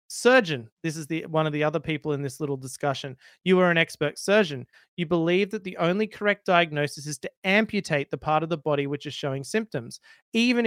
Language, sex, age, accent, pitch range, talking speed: English, male, 30-49, Australian, 145-180 Hz, 215 wpm